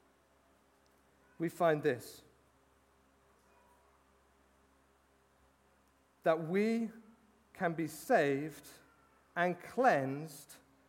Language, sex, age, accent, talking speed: English, male, 40-59, British, 55 wpm